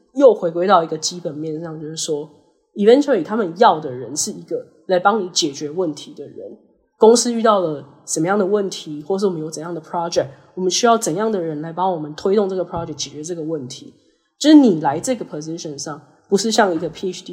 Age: 20-39